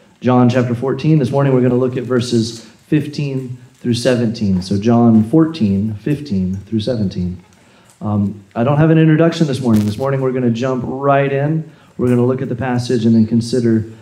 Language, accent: English, American